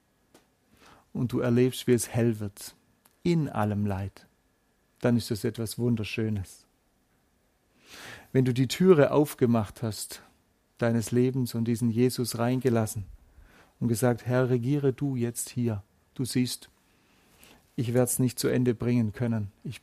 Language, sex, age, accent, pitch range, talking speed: German, male, 40-59, German, 115-130 Hz, 135 wpm